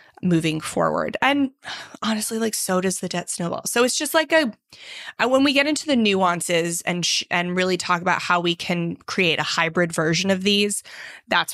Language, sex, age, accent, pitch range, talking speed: English, female, 20-39, American, 170-215 Hz, 190 wpm